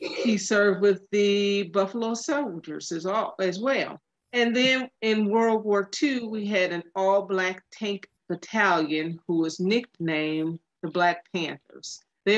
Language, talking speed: English, 135 wpm